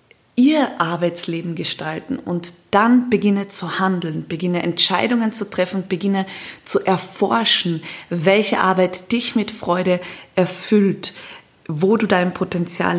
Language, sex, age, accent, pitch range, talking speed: German, female, 20-39, German, 175-205 Hz, 115 wpm